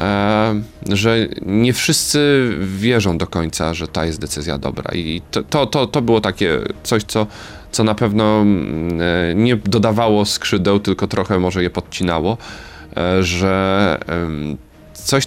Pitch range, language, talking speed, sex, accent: 80-105 Hz, Polish, 125 wpm, male, native